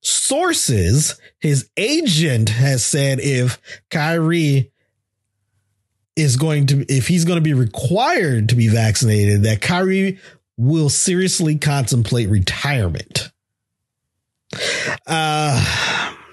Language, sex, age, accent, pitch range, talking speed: English, male, 30-49, American, 115-160 Hz, 95 wpm